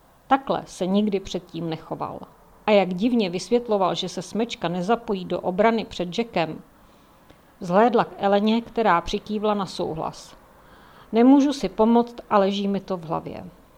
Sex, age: female, 50-69